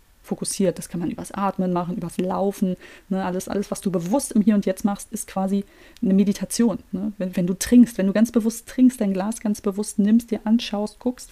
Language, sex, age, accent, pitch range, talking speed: German, female, 20-39, German, 180-215 Hz, 210 wpm